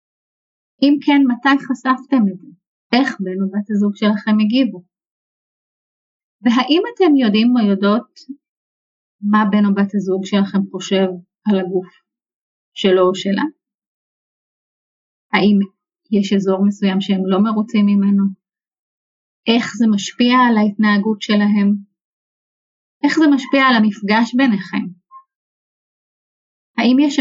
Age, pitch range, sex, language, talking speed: 30-49, 200-255 Hz, female, English, 110 wpm